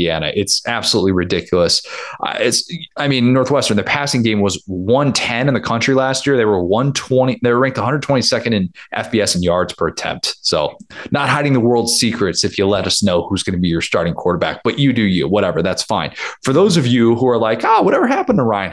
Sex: male